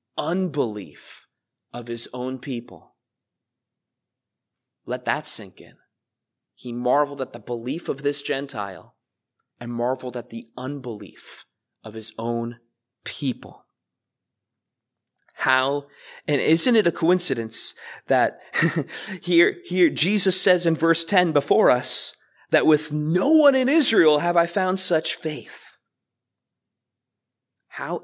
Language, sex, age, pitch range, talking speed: English, male, 20-39, 120-190 Hz, 115 wpm